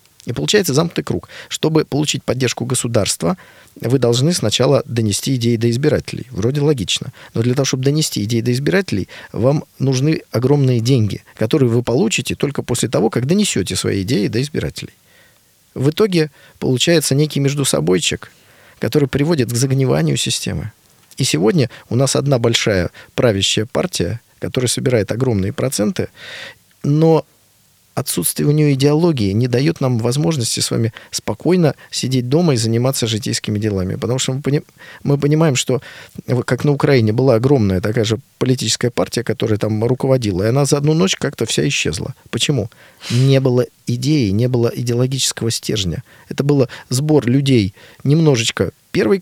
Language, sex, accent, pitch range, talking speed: Russian, male, native, 115-145 Hz, 150 wpm